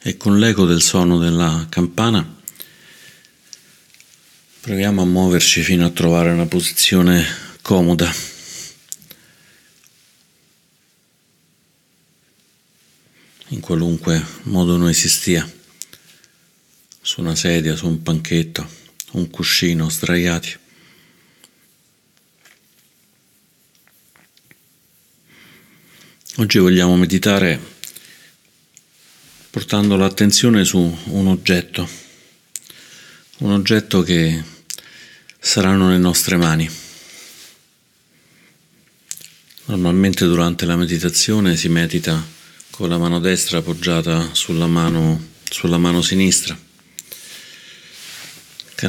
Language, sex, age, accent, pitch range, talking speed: Italian, male, 50-69, native, 85-90 Hz, 75 wpm